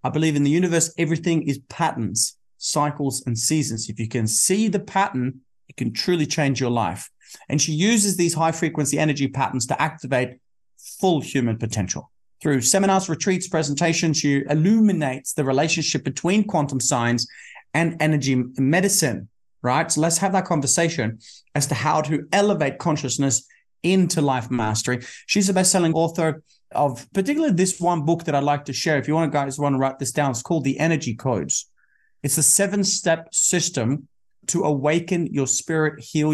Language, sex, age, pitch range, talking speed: English, male, 30-49, 125-170 Hz, 170 wpm